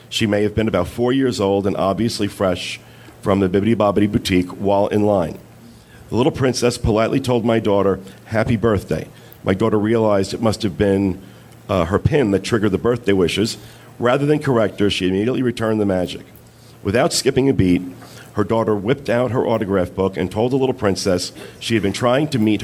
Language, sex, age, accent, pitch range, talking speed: English, male, 40-59, American, 95-120 Hz, 195 wpm